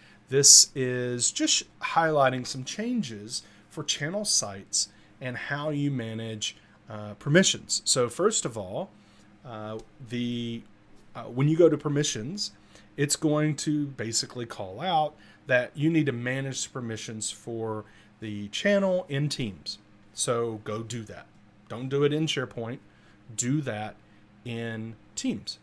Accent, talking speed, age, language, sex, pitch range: American, 135 wpm, 30-49, English, male, 105-145 Hz